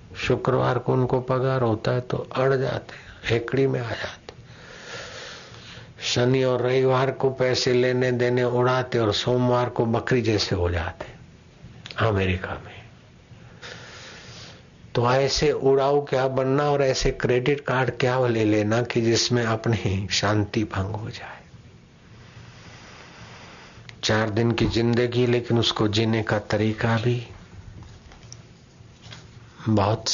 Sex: male